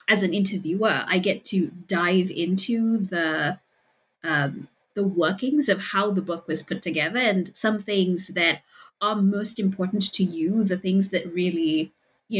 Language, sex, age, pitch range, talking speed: English, female, 20-39, 175-210 Hz, 160 wpm